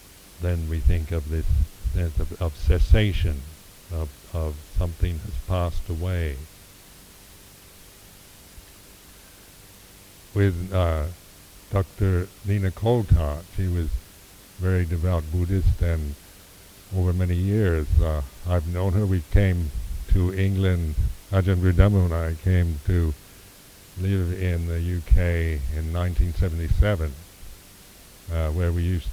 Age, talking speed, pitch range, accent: 60-79, 100 wpm, 80-95 Hz, American